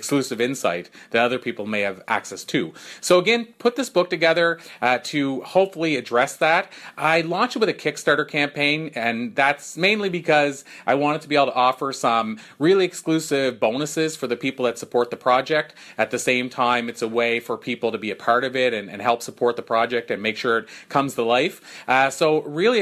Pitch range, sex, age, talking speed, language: 120-150 Hz, male, 30-49, 210 wpm, English